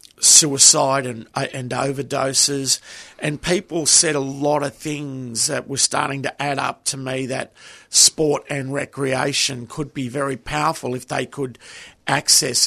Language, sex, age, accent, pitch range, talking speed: English, male, 50-69, Australian, 125-140 Hz, 145 wpm